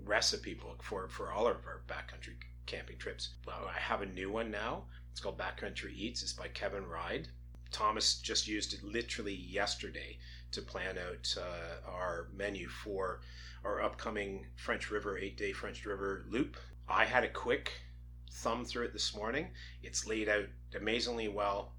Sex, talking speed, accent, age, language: male, 165 wpm, American, 30-49, English